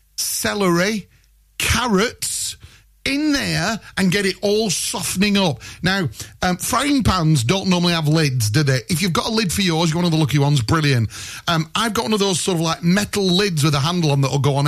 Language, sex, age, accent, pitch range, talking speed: English, male, 30-49, British, 135-195 Hz, 215 wpm